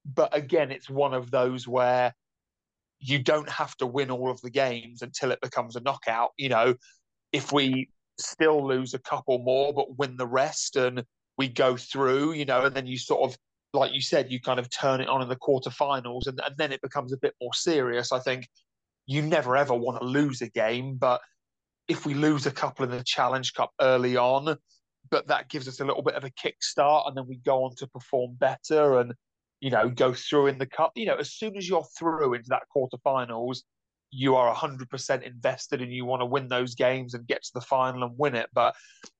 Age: 30-49